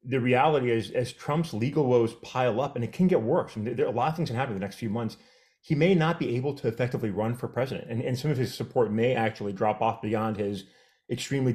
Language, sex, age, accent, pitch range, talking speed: English, male, 30-49, American, 110-145 Hz, 270 wpm